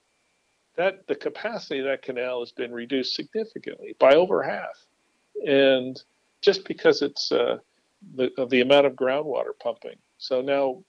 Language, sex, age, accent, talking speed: English, male, 50-69, American, 145 wpm